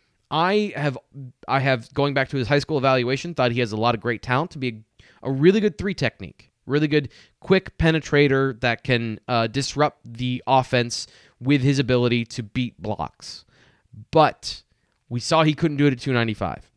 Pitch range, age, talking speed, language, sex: 115-160 Hz, 20-39, 185 wpm, English, male